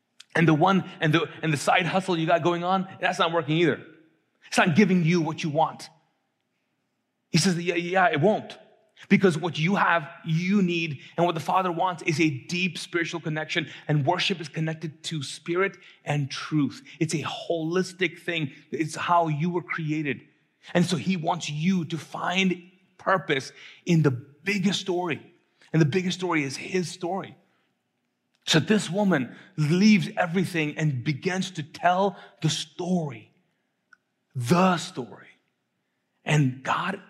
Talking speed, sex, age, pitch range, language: 155 wpm, male, 30-49, 155-180 Hz, English